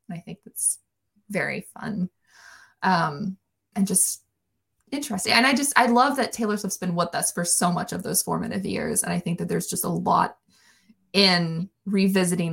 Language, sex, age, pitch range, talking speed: English, female, 20-39, 180-230 Hz, 180 wpm